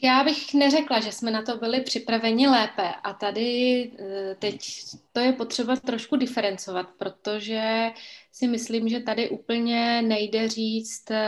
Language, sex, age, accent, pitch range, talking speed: Czech, female, 20-39, native, 200-230 Hz, 140 wpm